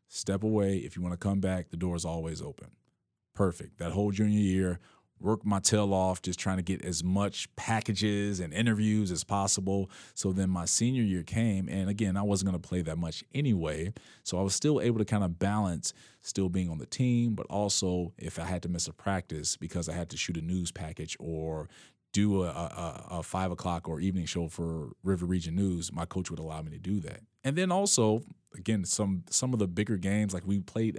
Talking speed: 220 wpm